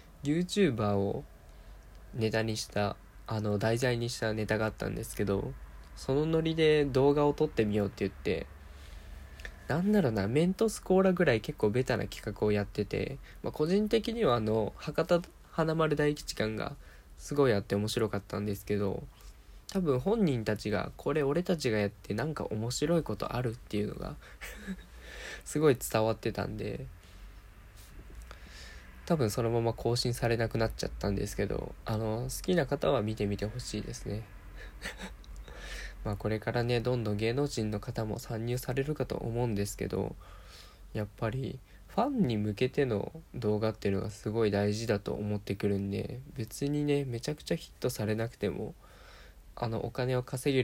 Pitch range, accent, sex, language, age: 100-125 Hz, native, male, Japanese, 20-39